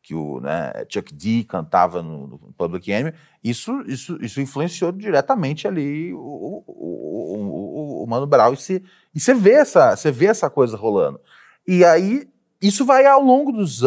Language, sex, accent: Portuguese, male, Brazilian